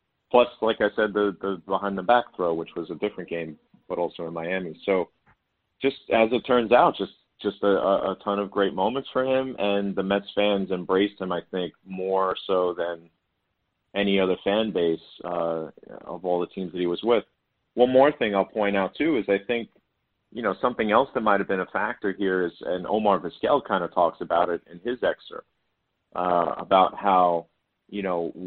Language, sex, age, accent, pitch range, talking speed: English, male, 40-59, American, 90-110 Hz, 200 wpm